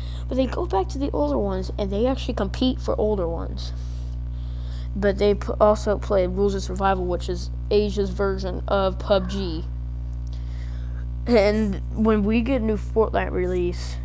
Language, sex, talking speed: English, female, 155 wpm